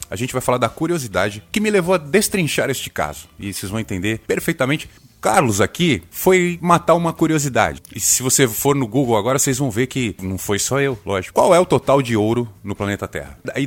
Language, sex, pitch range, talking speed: Portuguese, male, 95-135 Hz, 220 wpm